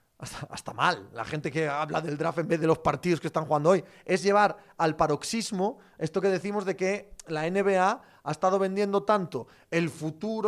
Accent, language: Spanish, Spanish